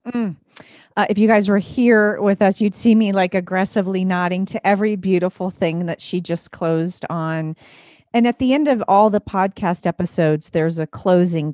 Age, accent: 40-59, American